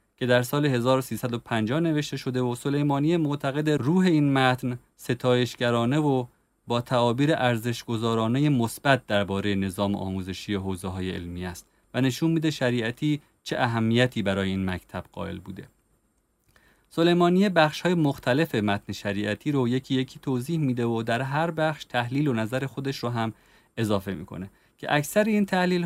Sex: male